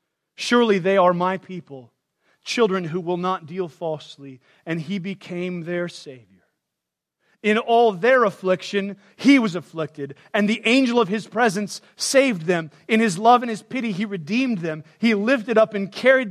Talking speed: 165 wpm